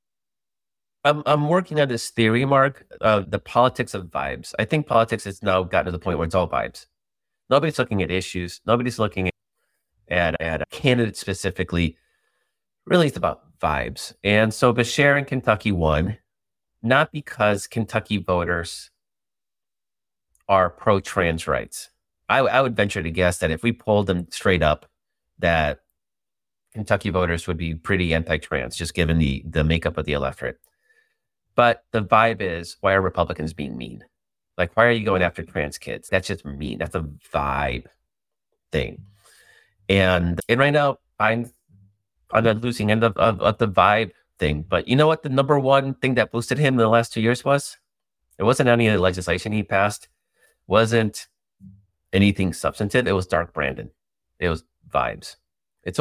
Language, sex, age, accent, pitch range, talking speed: English, male, 30-49, American, 85-120 Hz, 170 wpm